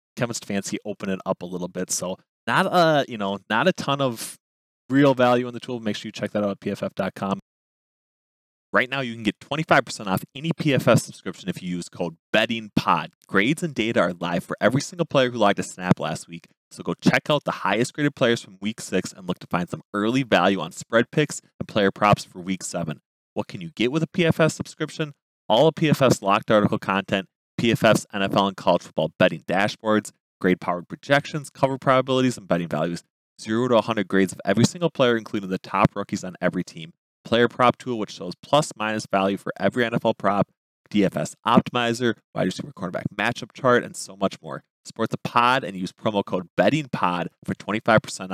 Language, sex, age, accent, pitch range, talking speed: English, male, 20-39, American, 95-135 Hz, 205 wpm